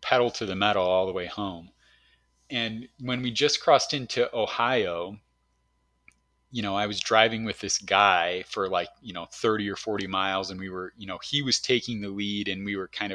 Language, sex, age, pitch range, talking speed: English, male, 30-49, 95-115 Hz, 205 wpm